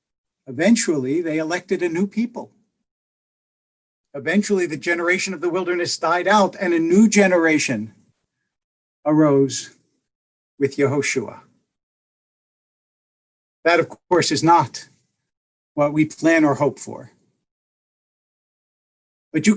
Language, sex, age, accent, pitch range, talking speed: English, male, 50-69, American, 145-200 Hz, 105 wpm